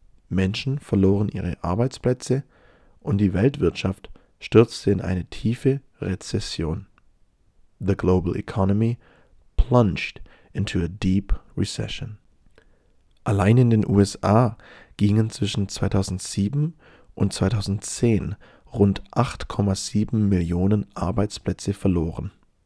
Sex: male